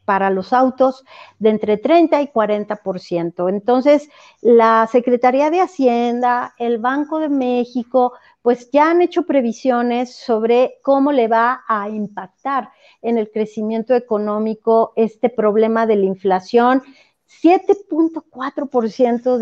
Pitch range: 220-265 Hz